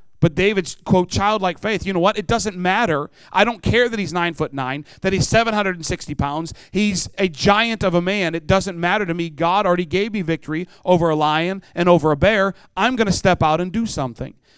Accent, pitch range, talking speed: American, 155-200 Hz, 235 wpm